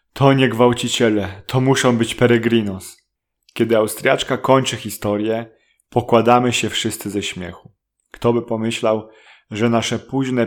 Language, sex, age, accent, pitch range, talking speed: Polish, male, 30-49, native, 100-120 Hz, 125 wpm